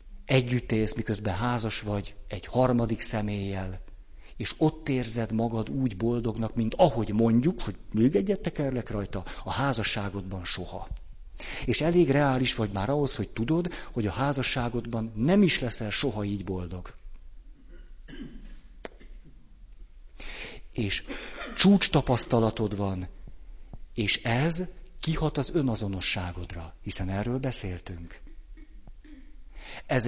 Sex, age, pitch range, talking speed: male, 50-69, 105-130 Hz, 110 wpm